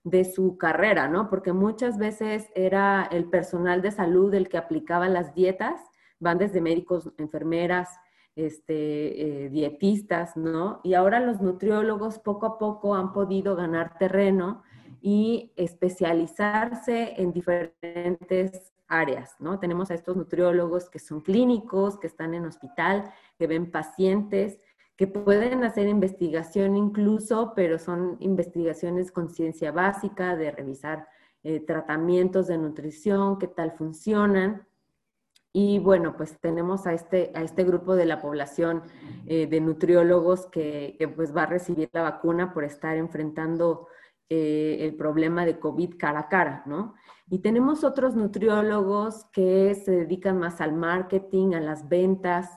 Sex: female